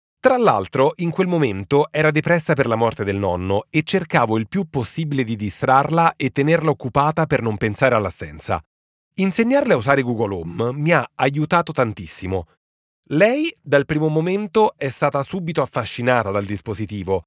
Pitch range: 110-165 Hz